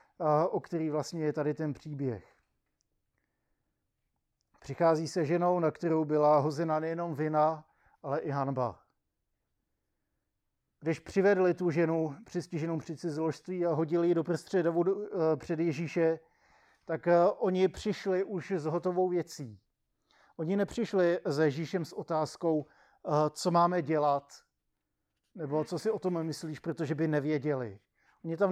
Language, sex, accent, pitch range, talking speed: Czech, male, native, 150-175 Hz, 125 wpm